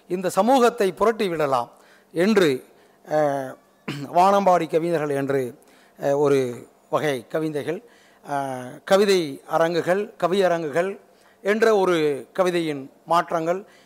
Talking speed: 75 wpm